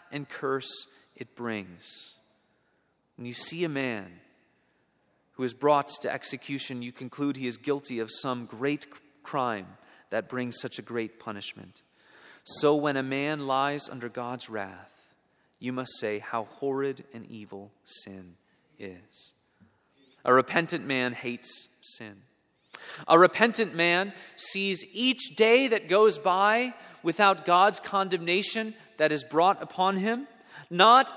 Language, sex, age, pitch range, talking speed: English, male, 30-49, 130-210 Hz, 135 wpm